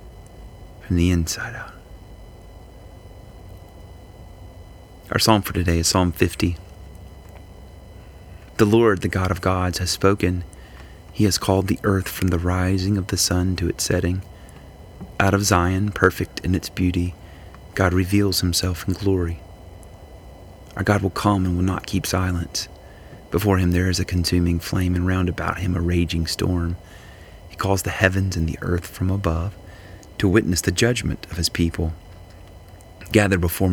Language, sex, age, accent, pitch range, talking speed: English, male, 30-49, American, 85-95 Hz, 155 wpm